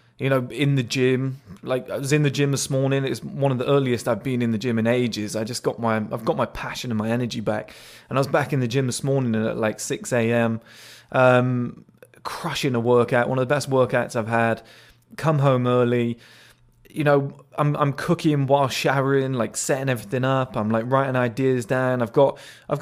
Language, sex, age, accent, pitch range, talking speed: English, male, 20-39, British, 120-145 Hz, 215 wpm